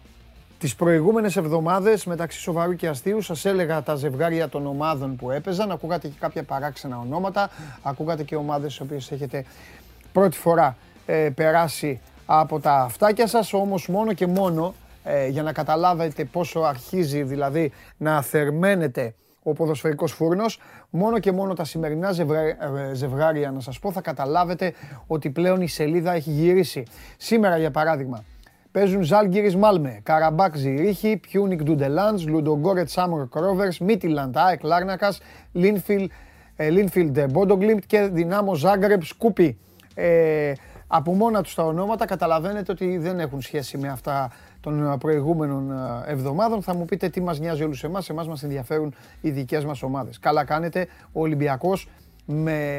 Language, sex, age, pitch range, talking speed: Greek, male, 30-49, 145-185 Hz, 145 wpm